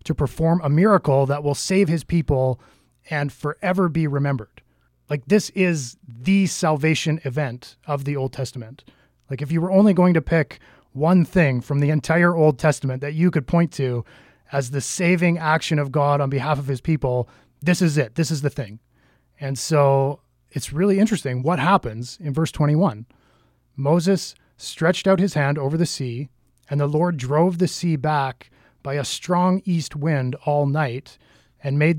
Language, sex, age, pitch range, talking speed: English, male, 30-49, 135-170 Hz, 180 wpm